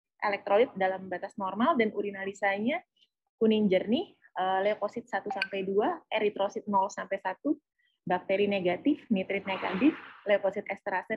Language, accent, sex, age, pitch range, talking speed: Indonesian, native, female, 20-39, 195-235 Hz, 95 wpm